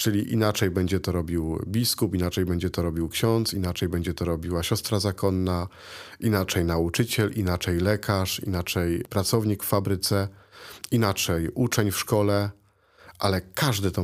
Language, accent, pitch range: Polish, native, 95-115 Hz